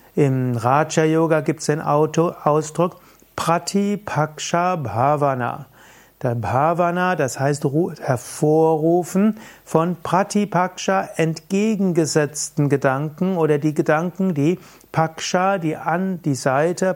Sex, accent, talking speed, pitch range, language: male, German, 85 wpm, 140-175 Hz, German